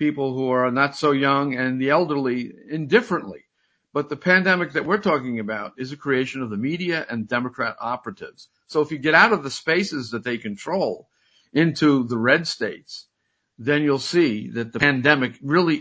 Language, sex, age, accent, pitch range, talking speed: English, male, 50-69, American, 115-150 Hz, 180 wpm